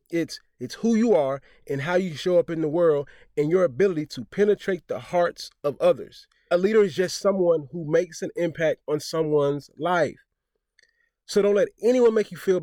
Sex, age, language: male, 20-39, English